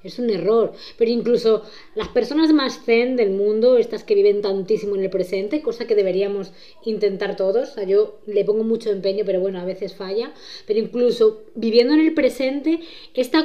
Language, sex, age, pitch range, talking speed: Spanish, female, 20-39, 205-265 Hz, 180 wpm